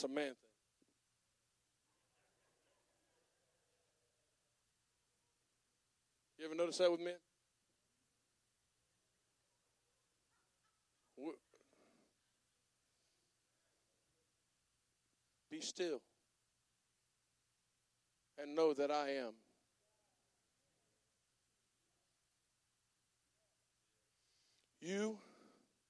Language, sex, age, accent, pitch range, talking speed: English, male, 60-79, American, 125-175 Hz, 35 wpm